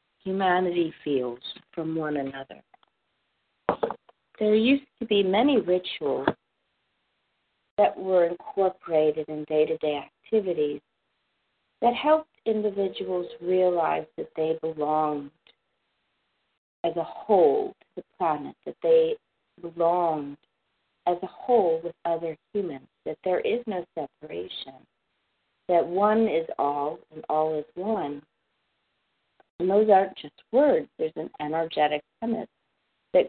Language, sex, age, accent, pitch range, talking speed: English, female, 50-69, American, 155-215 Hz, 110 wpm